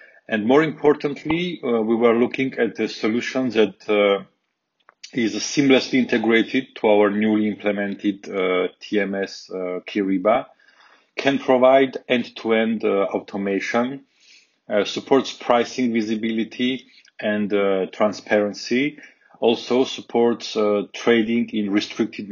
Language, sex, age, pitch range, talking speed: English, male, 30-49, 105-130 Hz, 110 wpm